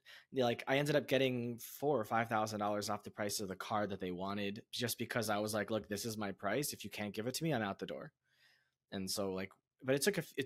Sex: male